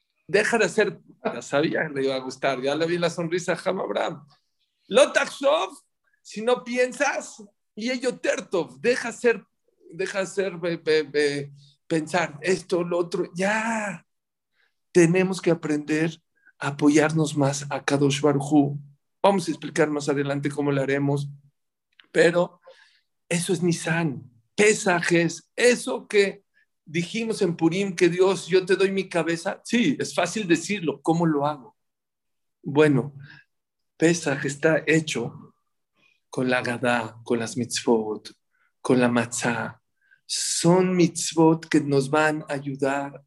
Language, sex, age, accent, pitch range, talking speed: English, male, 50-69, Mexican, 145-190 Hz, 130 wpm